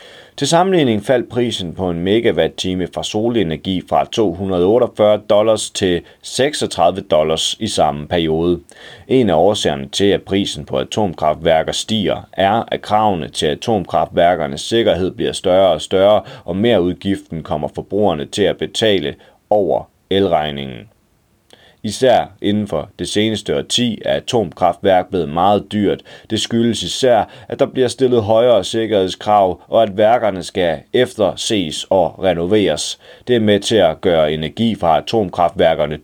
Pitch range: 85-110 Hz